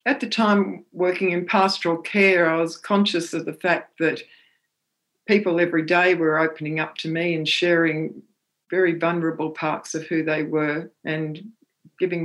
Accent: Australian